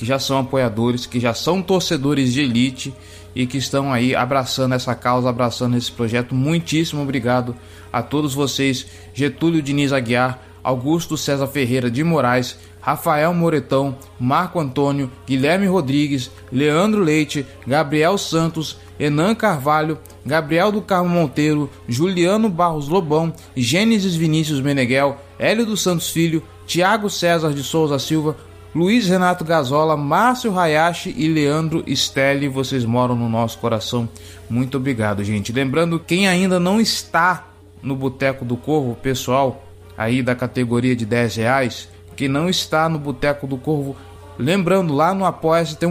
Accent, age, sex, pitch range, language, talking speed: Brazilian, 20-39, male, 125-165 Hz, Portuguese, 140 wpm